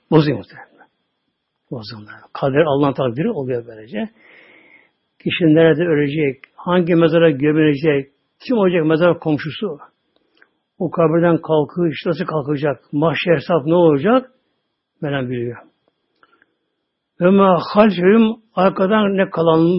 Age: 60-79